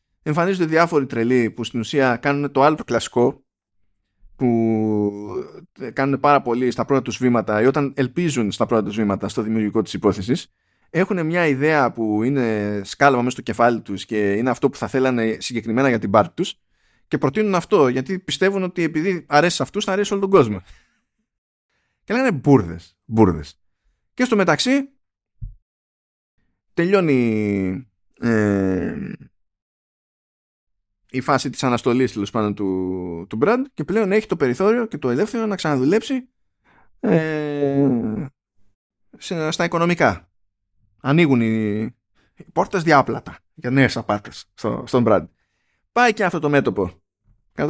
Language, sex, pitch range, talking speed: Greek, male, 105-170 Hz, 140 wpm